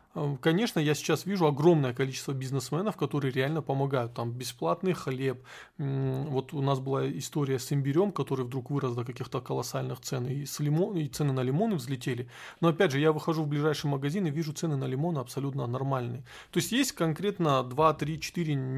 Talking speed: 175 wpm